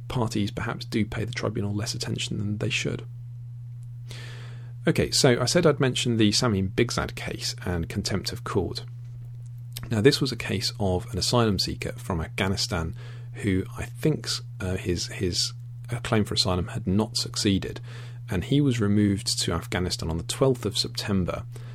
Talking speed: 165 wpm